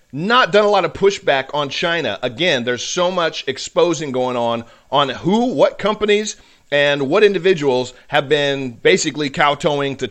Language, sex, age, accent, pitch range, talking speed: English, male, 40-59, American, 130-175 Hz, 160 wpm